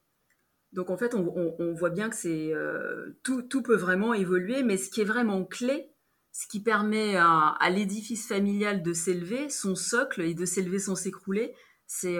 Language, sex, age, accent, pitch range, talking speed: French, female, 30-49, French, 180-220 Hz, 190 wpm